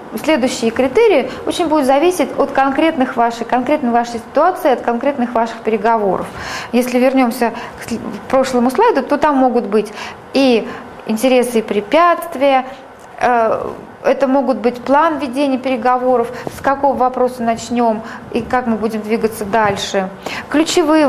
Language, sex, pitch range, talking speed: Russian, female, 230-300 Hz, 120 wpm